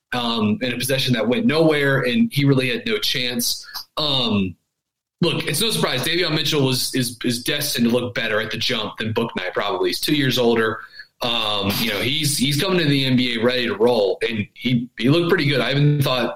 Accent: American